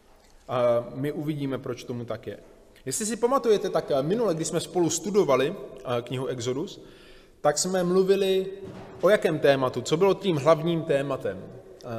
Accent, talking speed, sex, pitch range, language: native, 145 wpm, male, 120-170 Hz, Czech